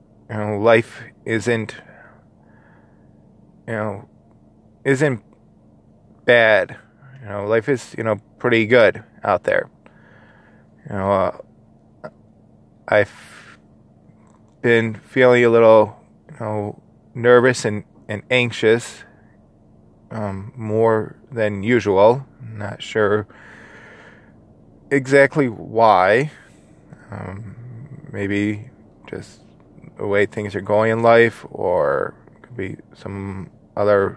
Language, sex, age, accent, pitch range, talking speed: English, male, 20-39, American, 105-115 Hz, 100 wpm